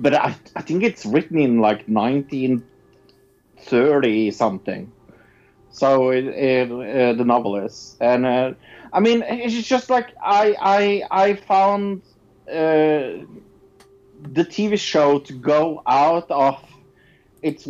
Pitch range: 120-175 Hz